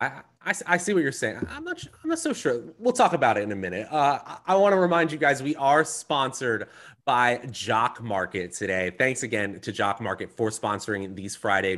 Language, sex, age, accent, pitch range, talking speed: English, male, 30-49, American, 105-135 Hz, 220 wpm